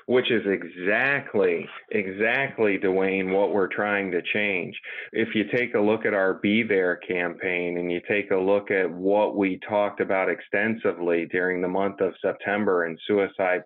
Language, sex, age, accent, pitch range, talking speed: English, male, 30-49, American, 90-105 Hz, 165 wpm